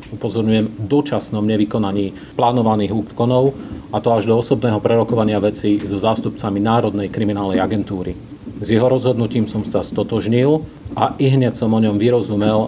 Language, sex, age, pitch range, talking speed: Slovak, male, 40-59, 105-120 Hz, 145 wpm